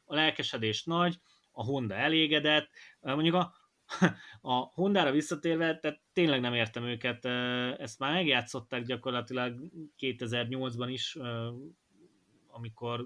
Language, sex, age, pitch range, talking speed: Hungarian, male, 20-39, 115-145 Hz, 105 wpm